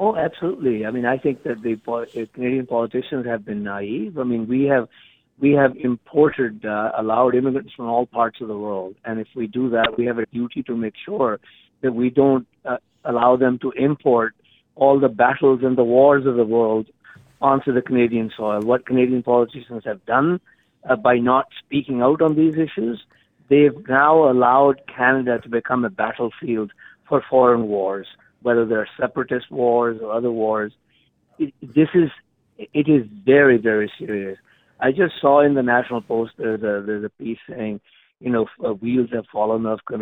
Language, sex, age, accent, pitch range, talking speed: English, male, 50-69, Indian, 110-135 Hz, 180 wpm